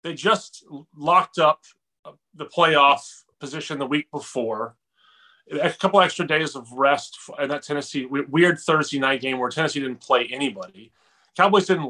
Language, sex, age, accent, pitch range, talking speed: English, male, 30-49, American, 140-185 Hz, 150 wpm